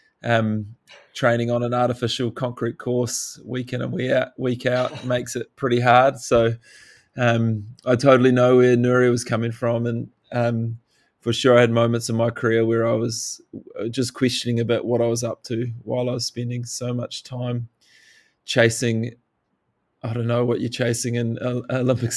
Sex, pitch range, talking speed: male, 115-125 Hz, 175 wpm